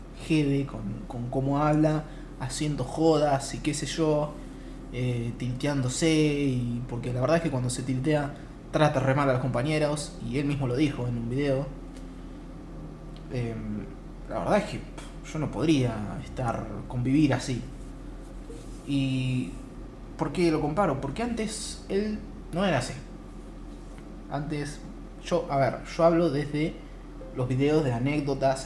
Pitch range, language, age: 125-160 Hz, Spanish, 20-39